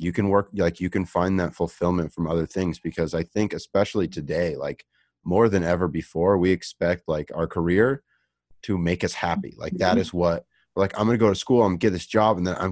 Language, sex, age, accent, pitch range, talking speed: English, male, 30-49, American, 85-105 Hz, 225 wpm